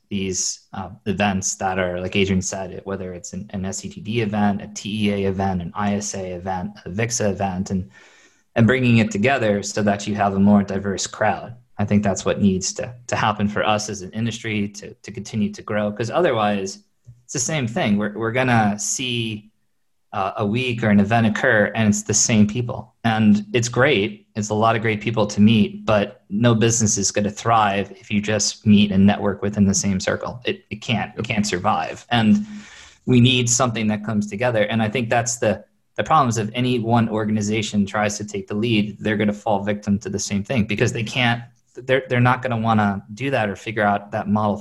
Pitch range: 100-115 Hz